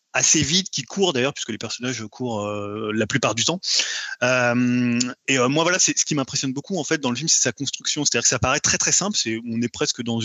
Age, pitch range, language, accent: 20-39, 115-145 Hz, French, French